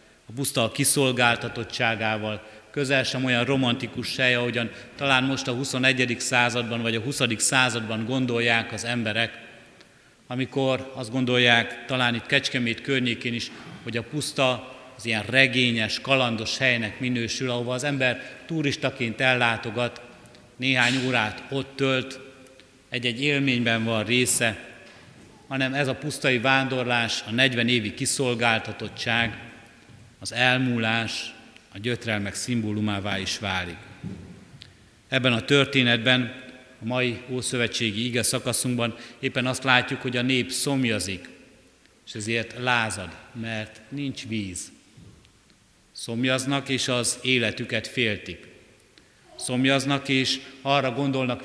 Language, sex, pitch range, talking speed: Hungarian, male, 115-130 Hz, 115 wpm